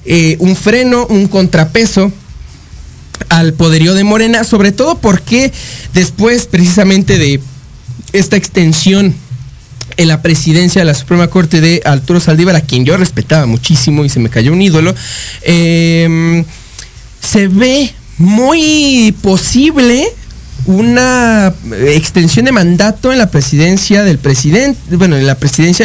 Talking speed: 130 wpm